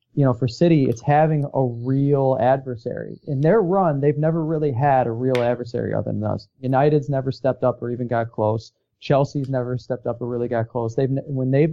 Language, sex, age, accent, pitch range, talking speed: English, male, 30-49, American, 125-150 Hz, 210 wpm